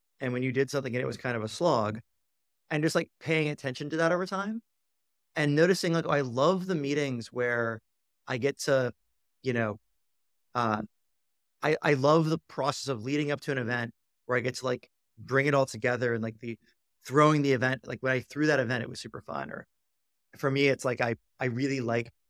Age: 30-49